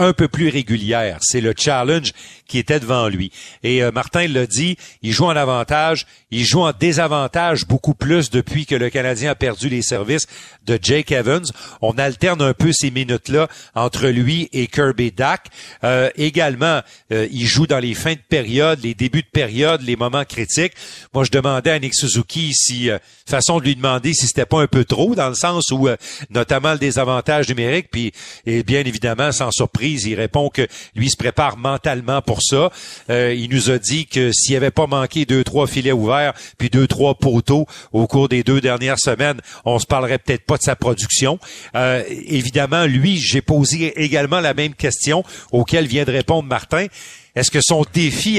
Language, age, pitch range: French, 50-69, 125-155 Hz